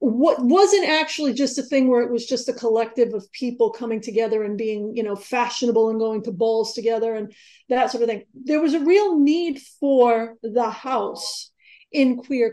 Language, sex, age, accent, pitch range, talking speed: English, female, 40-59, American, 215-250 Hz, 195 wpm